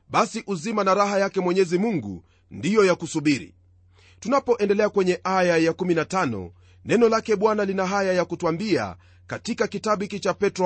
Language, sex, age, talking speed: Swahili, male, 40-59, 150 wpm